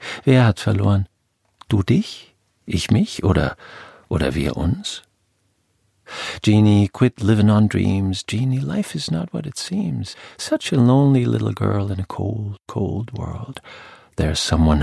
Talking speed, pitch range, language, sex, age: 140 wpm, 90-120 Hz, German, male, 50-69